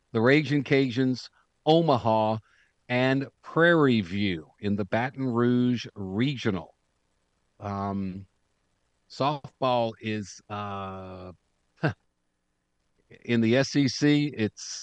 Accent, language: American, English